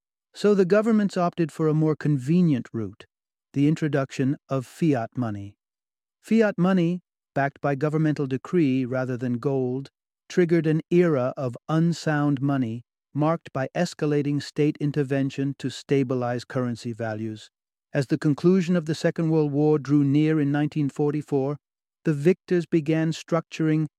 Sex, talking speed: male, 135 wpm